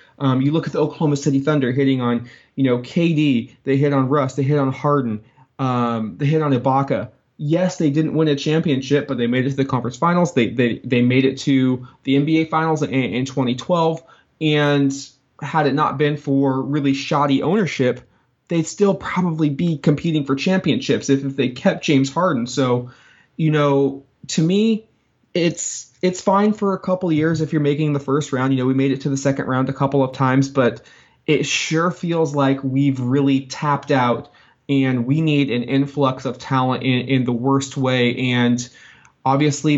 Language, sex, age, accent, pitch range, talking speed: English, male, 20-39, American, 130-155 Hz, 195 wpm